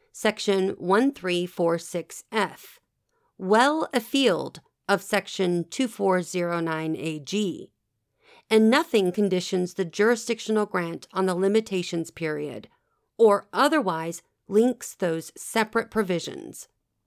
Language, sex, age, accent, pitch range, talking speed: English, female, 40-59, American, 170-215 Hz, 80 wpm